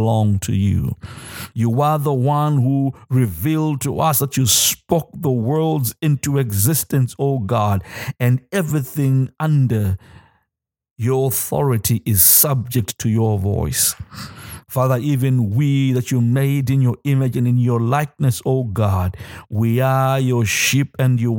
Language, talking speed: English, 150 wpm